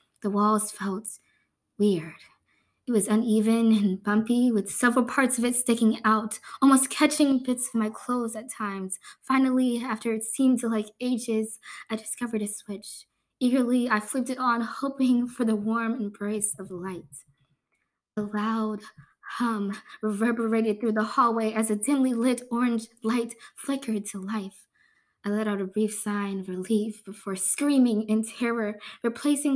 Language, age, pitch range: English, 20-39, 210-245 Hz